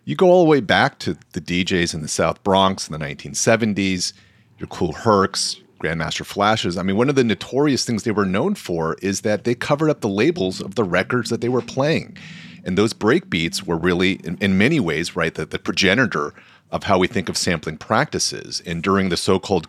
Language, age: English, 40-59